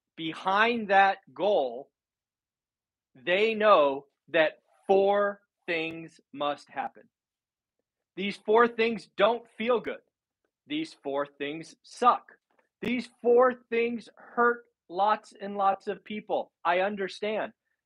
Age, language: 40-59, English